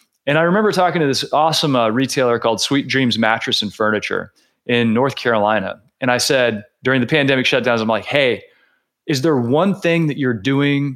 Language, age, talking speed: English, 30-49, 190 wpm